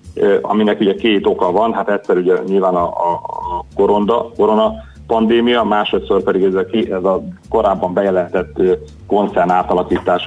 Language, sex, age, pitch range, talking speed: Hungarian, male, 30-49, 90-100 Hz, 130 wpm